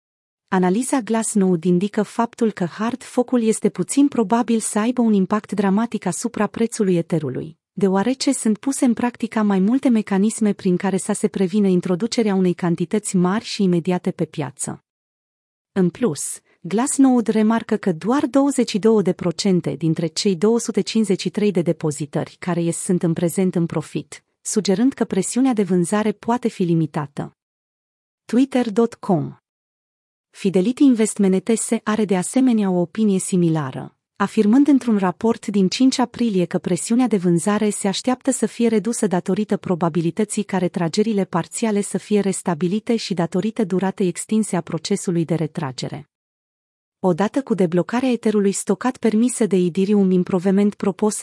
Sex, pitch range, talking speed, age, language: female, 180-225 Hz, 135 wpm, 30-49, Romanian